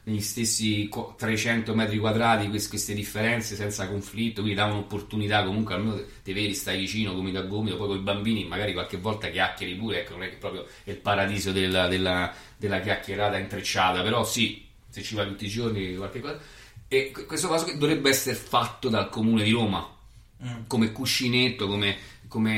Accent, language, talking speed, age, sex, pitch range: native, Italian, 175 wpm, 30-49, male, 100-115 Hz